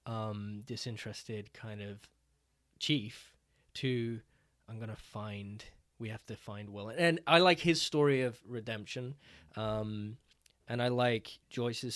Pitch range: 105-125 Hz